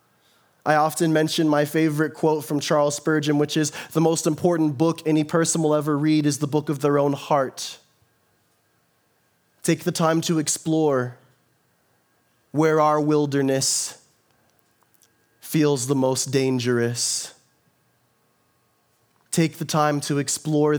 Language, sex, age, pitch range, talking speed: English, male, 20-39, 120-155 Hz, 125 wpm